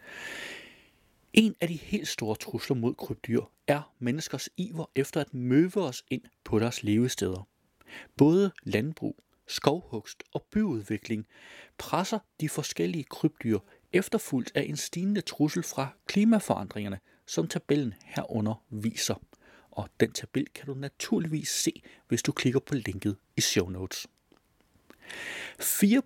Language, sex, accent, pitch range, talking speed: Danish, male, native, 120-185 Hz, 125 wpm